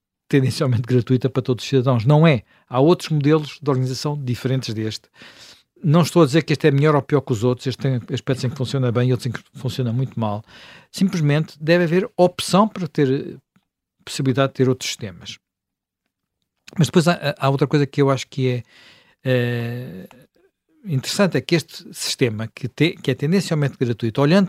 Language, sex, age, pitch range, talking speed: Portuguese, male, 50-69, 125-160 Hz, 185 wpm